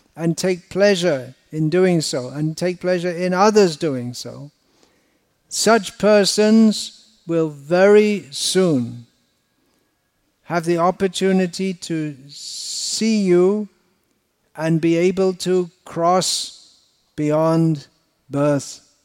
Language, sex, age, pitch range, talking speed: Hindi, male, 60-79, 145-185 Hz, 100 wpm